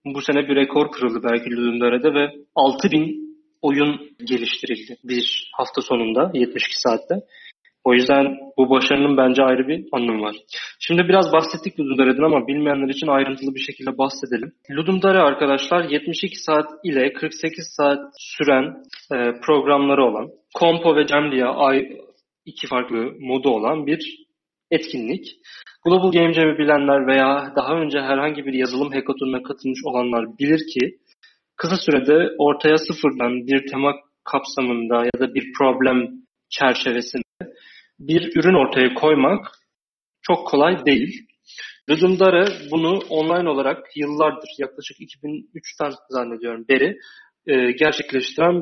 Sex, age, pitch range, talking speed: male, 30-49, 130-160 Hz, 125 wpm